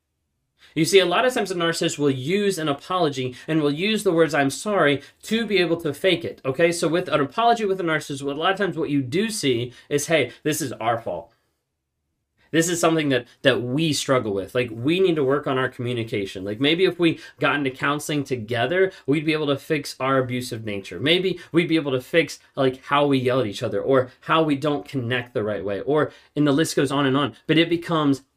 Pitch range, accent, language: 125-160 Hz, American, English